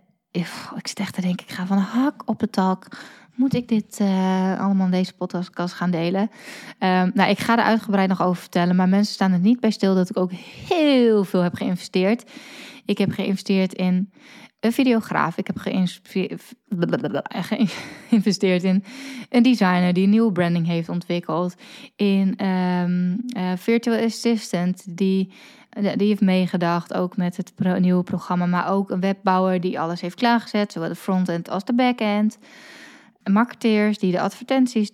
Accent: Dutch